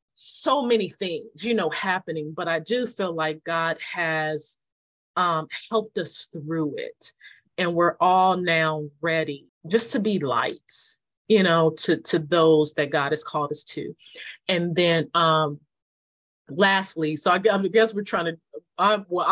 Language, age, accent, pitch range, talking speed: English, 30-49, American, 155-185 Hz, 150 wpm